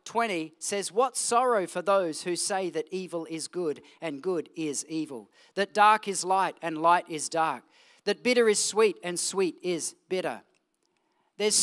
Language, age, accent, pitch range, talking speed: English, 40-59, Australian, 170-220 Hz, 170 wpm